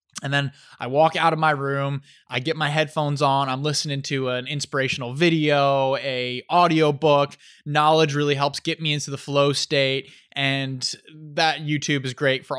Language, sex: English, male